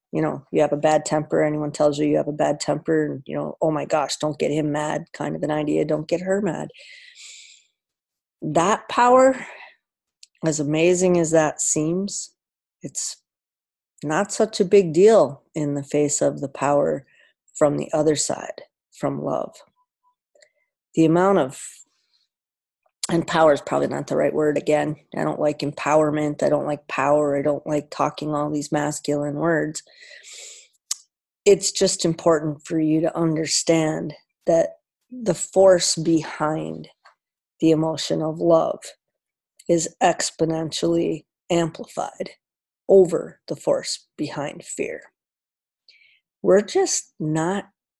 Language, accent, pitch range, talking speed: English, American, 150-190 Hz, 140 wpm